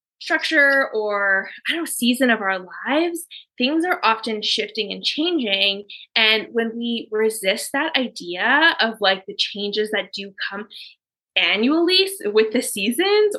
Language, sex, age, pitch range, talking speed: English, female, 20-39, 200-255 Hz, 145 wpm